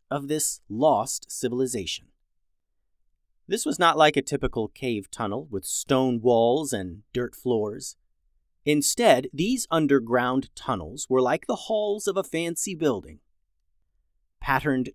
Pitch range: 105-160 Hz